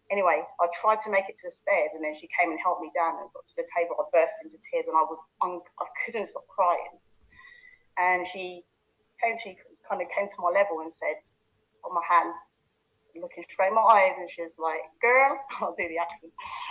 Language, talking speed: English, 225 wpm